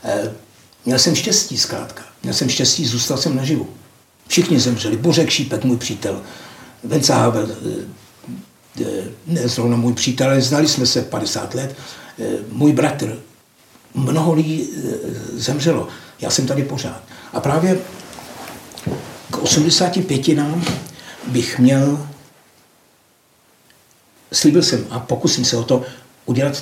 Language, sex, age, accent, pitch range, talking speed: Czech, male, 60-79, native, 125-145 Hz, 115 wpm